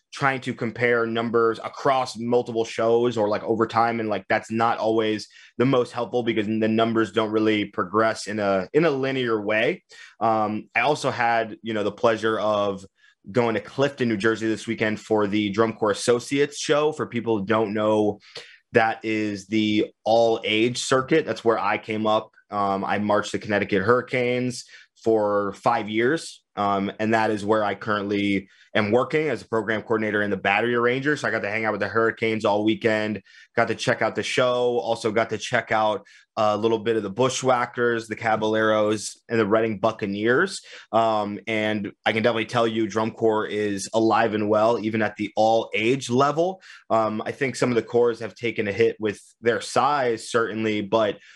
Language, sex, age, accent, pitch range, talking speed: English, male, 20-39, American, 105-120 Hz, 190 wpm